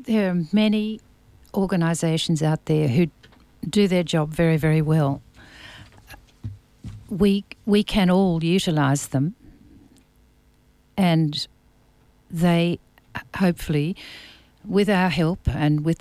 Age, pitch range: 60-79, 145-180 Hz